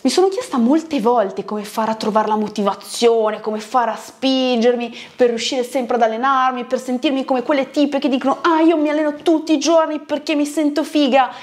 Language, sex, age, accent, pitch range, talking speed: Italian, female, 20-39, native, 210-290 Hz, 200 wpm